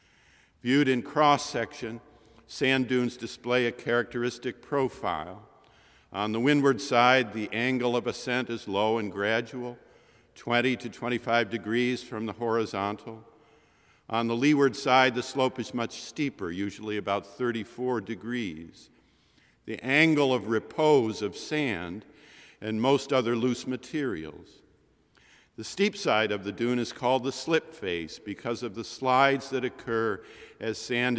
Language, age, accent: English, 50-69, American